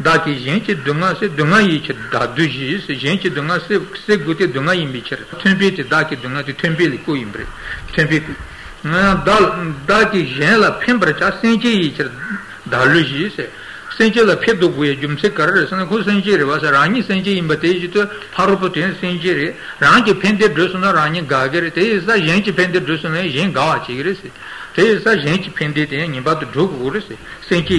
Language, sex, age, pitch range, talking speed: Italian, male, 60-79, 150-195 Hz, 155 wpm